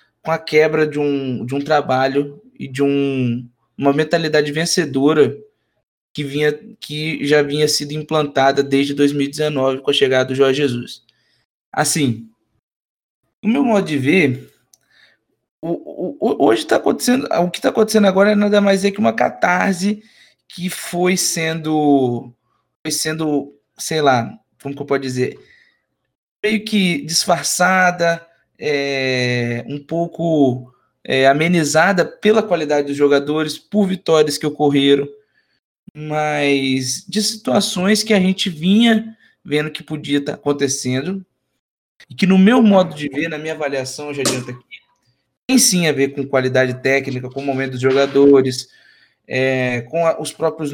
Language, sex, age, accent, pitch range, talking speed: Portuguese, male, 20-39, Brazilian, 140-180 Hz, 140 wpm